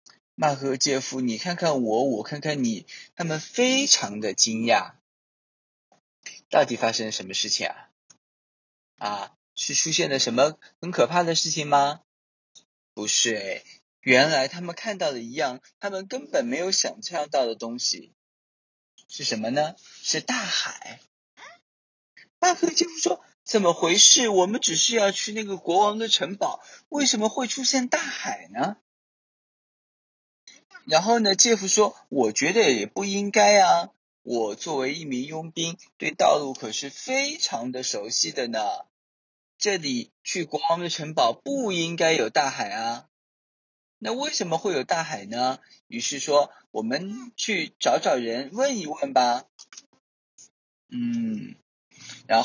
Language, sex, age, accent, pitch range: Chinese, male, 20-39, native, 140-230 Hz